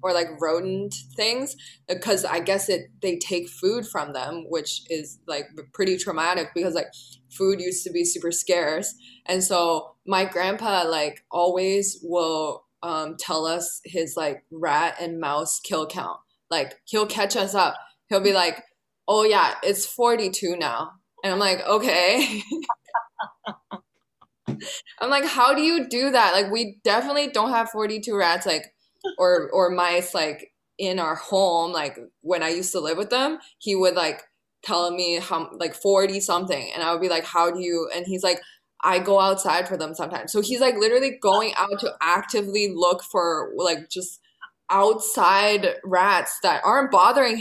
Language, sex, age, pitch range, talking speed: English, female, 20-39, 175-215 Hz, 170 wpm